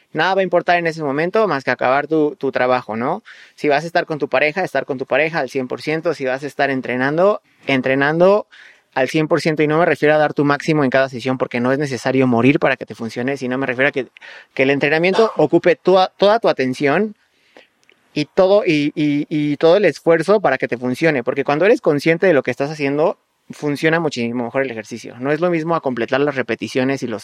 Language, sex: Spanish, male